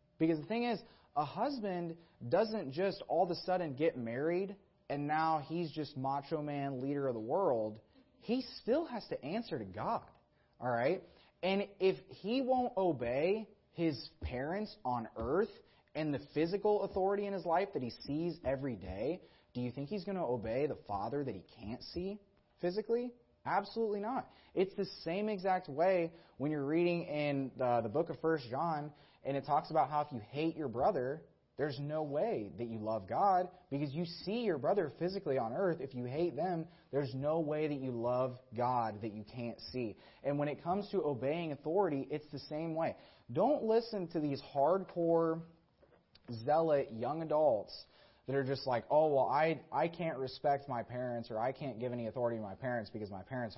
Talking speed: 190 wpm